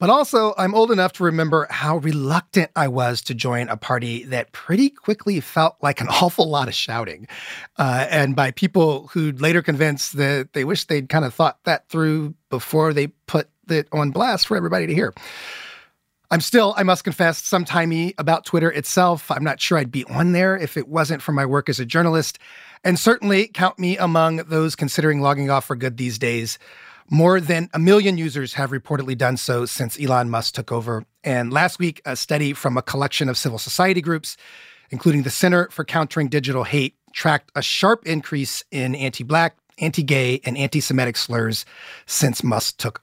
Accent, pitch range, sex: American, 135-180 Hz, male